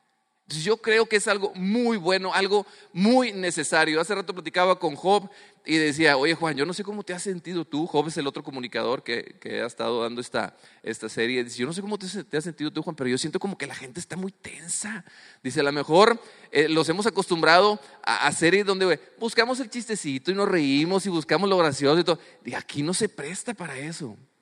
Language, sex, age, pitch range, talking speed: English, male, 30-49, 155-215 Hz, 220 wpm